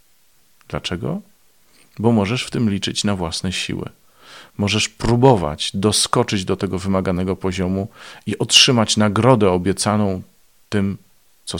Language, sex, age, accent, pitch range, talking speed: Polish, male, 40-59, native, 95-115 Hz, 115 wpm